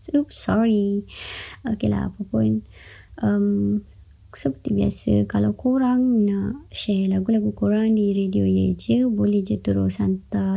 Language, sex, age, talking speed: Malay, male, 20-39, 115 wpm